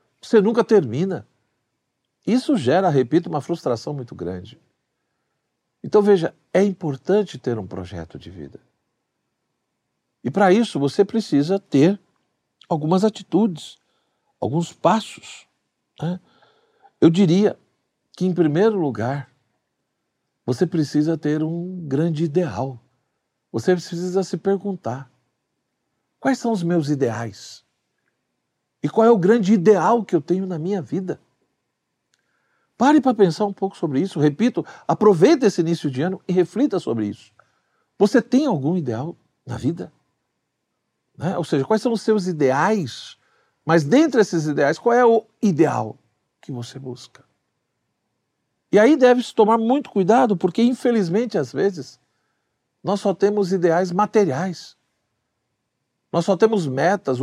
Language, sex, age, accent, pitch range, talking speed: Portuguese, male, 60-79, Brazilian, 145-210 Hz, 130 wpm